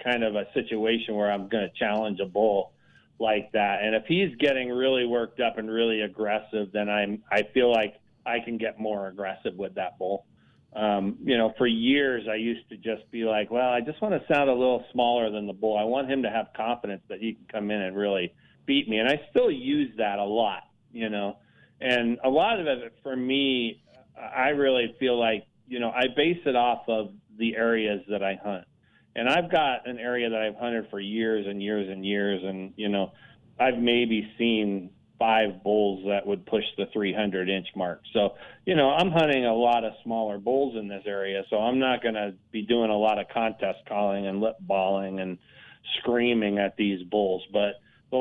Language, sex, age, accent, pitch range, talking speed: English, male, 40-59, American, 105-120 Hz, 210 wpm